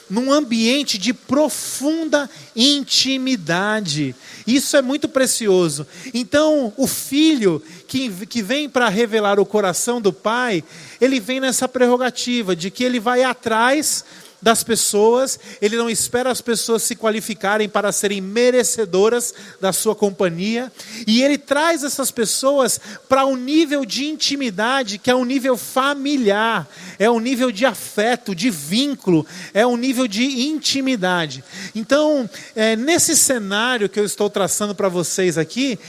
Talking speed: 135 wpm